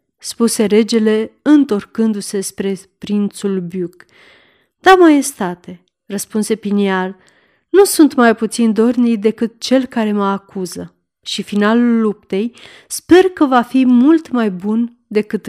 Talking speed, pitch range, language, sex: 120 wpm, 195-255 Hz, Romanian, female